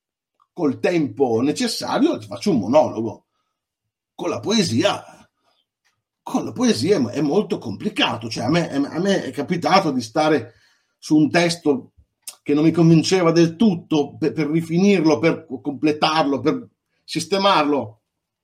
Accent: native